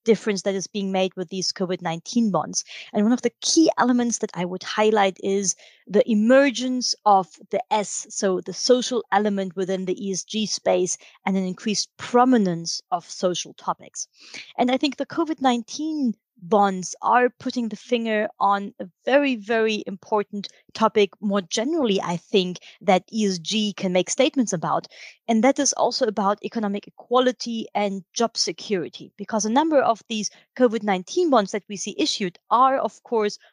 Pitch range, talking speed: 190-240 Hz, 160 wpm